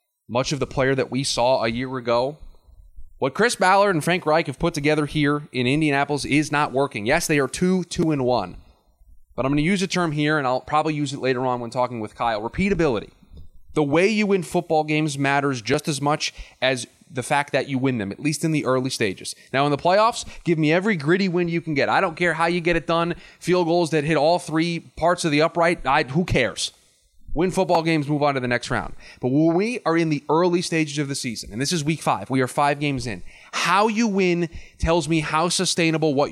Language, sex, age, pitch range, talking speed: English, male, 20-39, 135-175 Hz, 240 wpm